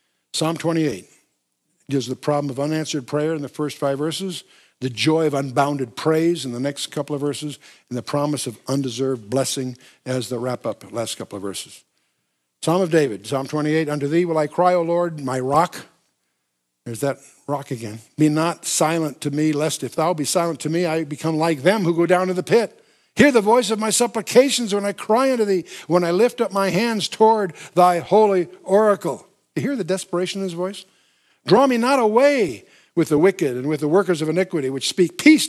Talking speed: 205 wpm